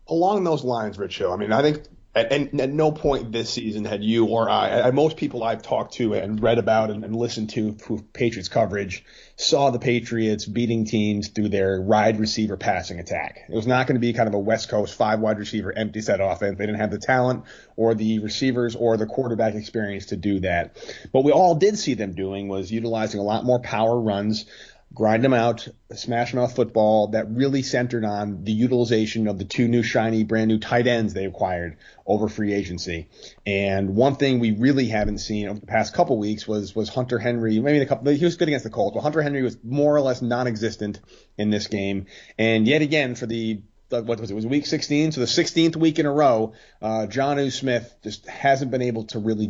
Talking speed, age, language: 220 wpm, 30-49, English